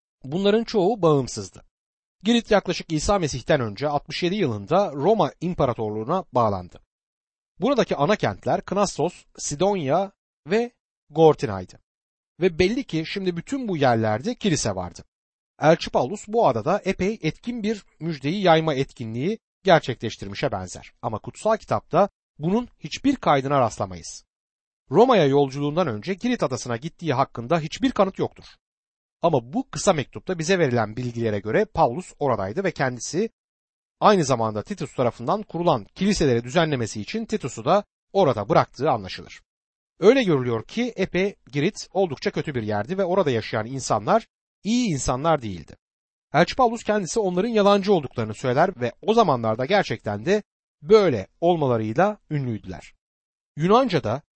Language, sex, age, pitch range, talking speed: Turkish, male, 60-79, 125-200 Hz, 125 wpm